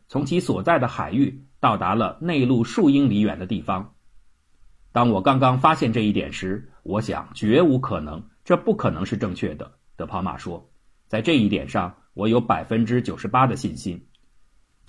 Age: 50-69